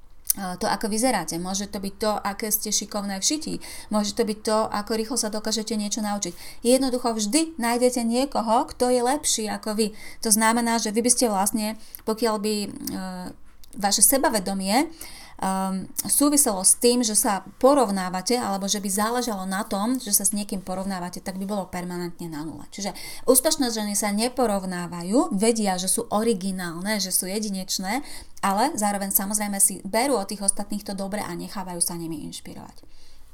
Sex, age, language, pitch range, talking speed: female, 30-49, Slovak, 195-240 Hz, 165 wpm